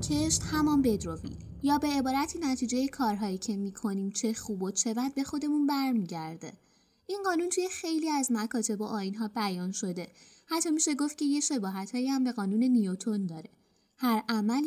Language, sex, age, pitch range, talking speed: Persian, female, 20-39, 210-275 Hz, 170 wpm